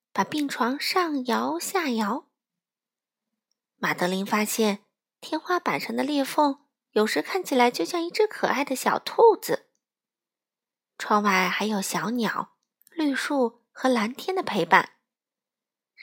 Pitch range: 205-295 Hz